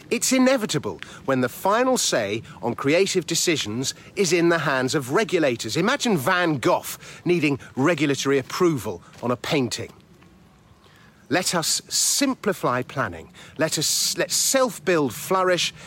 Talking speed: 125 wpm